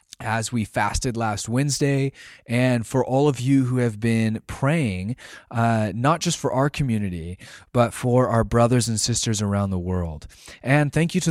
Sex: male